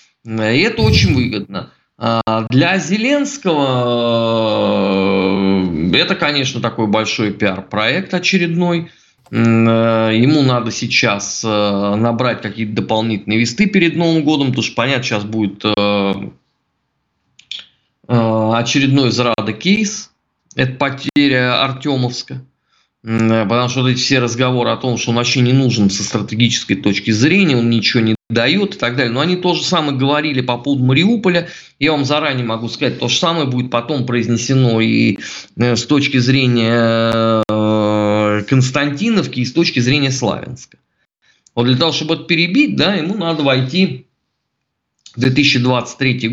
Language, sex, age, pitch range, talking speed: Russian, male, 20-39, 110-145 Hz, 125 wpm